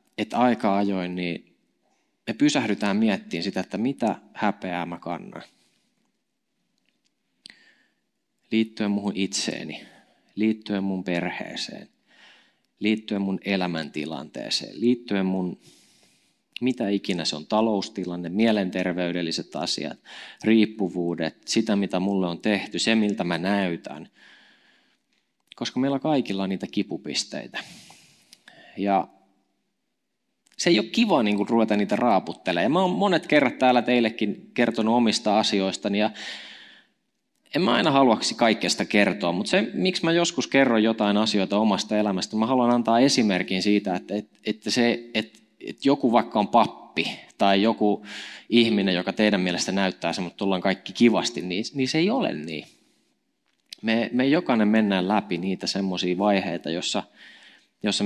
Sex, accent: male, native